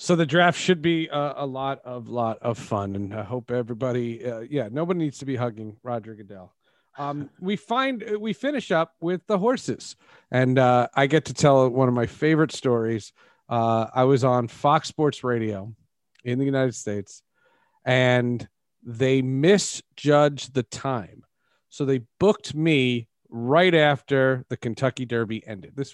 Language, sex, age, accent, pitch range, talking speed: English, male, 40-59, American, 125-170 Hz, 165 wpm